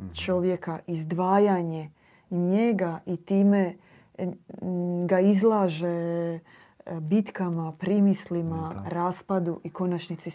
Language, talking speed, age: Croatian, 70 wpm, 20-39